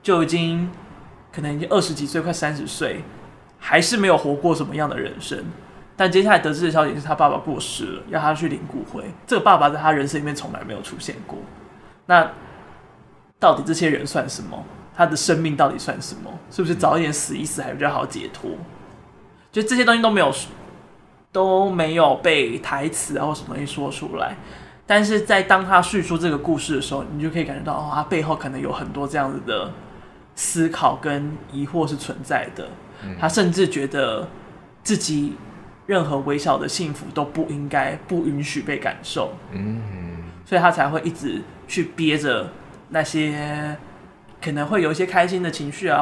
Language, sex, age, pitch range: Chinese, male, 20-39, 145-175 Hz